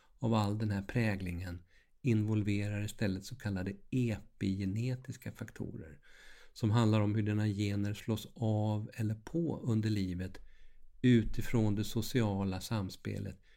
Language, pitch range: Swedish, 100-120 Hz